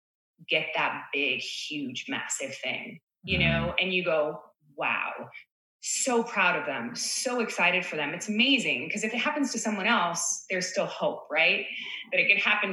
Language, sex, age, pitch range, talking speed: English, female, 20-39, 180-245 Hz, 175 wpm